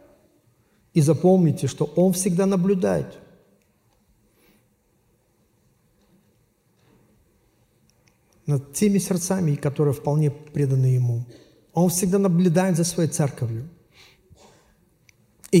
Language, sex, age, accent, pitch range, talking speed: Russian, male, 50-69, native, 135-175 Hz, 75 wpm